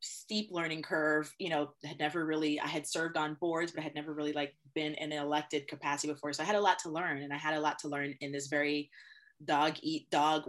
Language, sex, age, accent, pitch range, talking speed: English, female, 20-39, American, 150-175 Hz, 250 wpm